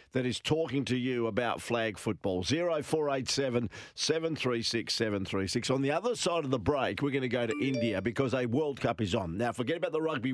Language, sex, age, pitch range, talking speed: English, male, 50-69, 115-145 Hz, 205 wpm